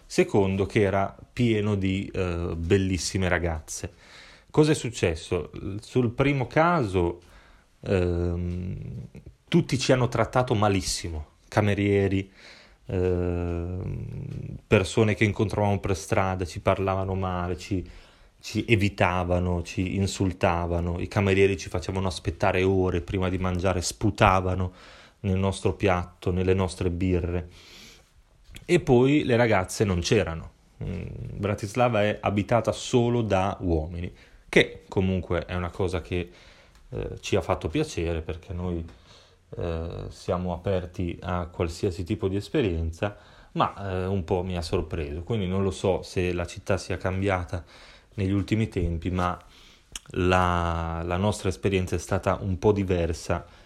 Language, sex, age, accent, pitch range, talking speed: Italian, male, 30-49, native, 90-105 Hz, 125 wpm